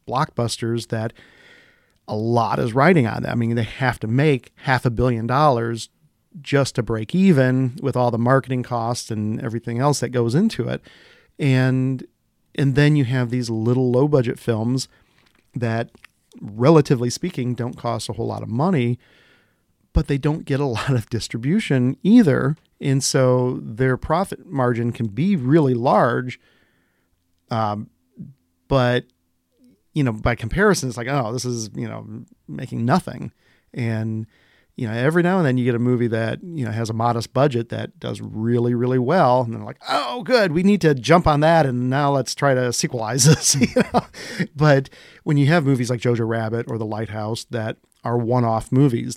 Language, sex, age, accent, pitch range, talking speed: English, male, 40-59, American, 115-140 Hz, 175 wpm